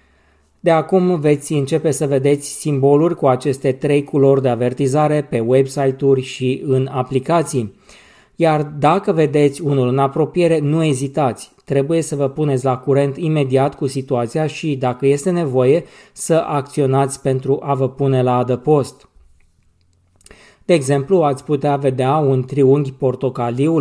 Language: Romanian